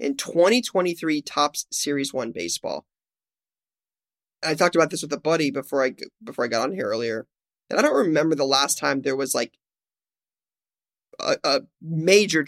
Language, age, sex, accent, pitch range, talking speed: English, 20-39, male, American, 145-175 Hz, 165 wpm